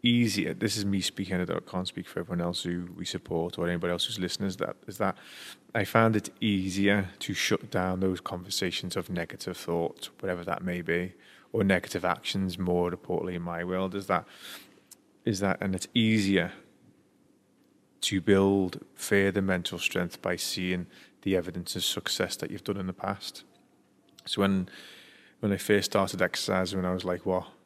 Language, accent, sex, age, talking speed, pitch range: English, British, male, 20-39, 180 wpm, 90-100 Hz